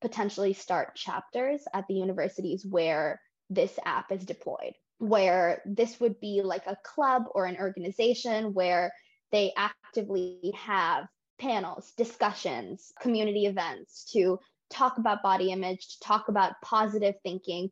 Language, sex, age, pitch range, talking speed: English, female, 20-39, 195-245 Hz, 130 wpm